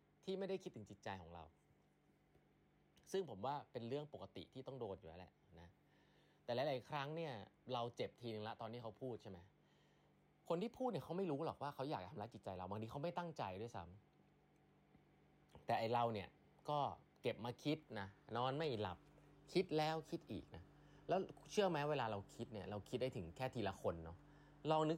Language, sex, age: Thai, male, 20-39